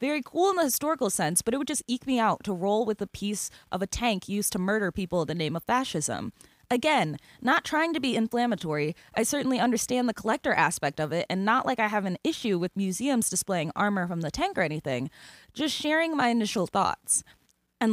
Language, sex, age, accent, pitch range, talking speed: English, female, 20-39, American, 195-260 Hz, 220 wpm